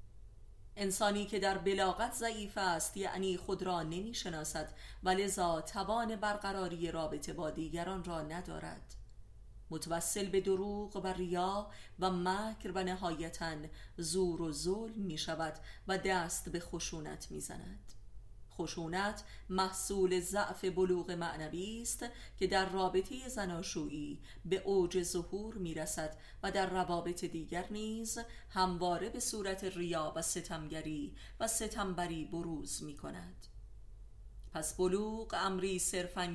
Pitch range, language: 155-195 Hz, Persian